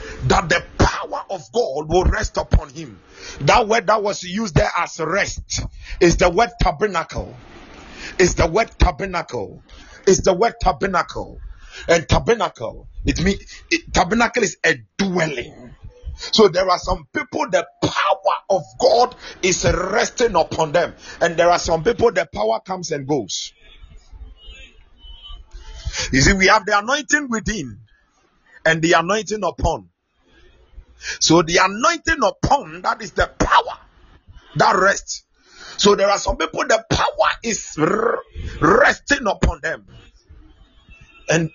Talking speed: 135 wpm